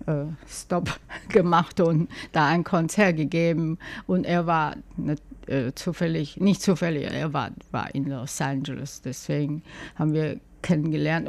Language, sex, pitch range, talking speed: German, female, 145-165 Hz, 135 wpm